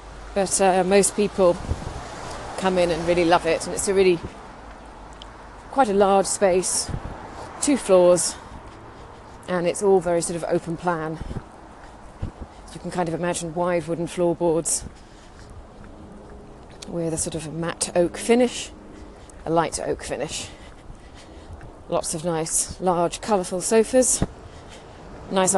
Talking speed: 125 wpm